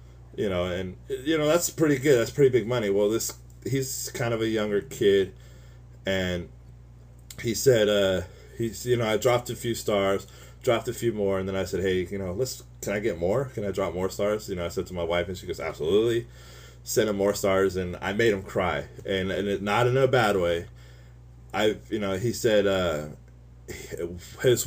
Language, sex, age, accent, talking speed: English, male, 20-39, American, 215 wpm